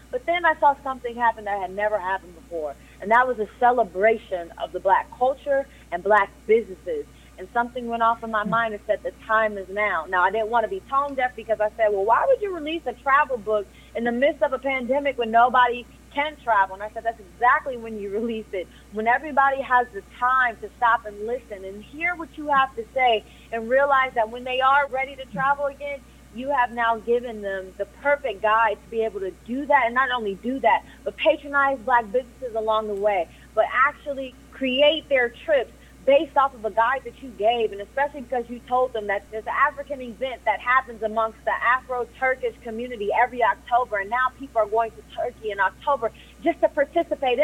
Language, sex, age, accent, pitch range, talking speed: English, female, 30-49, American, 215-270 Hz, 215 wpm